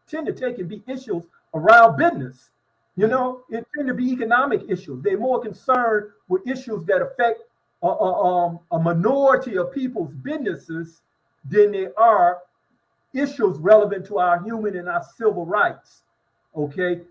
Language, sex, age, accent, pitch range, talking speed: English, male, 50-69, American, 160-220 Hz, 155 wpm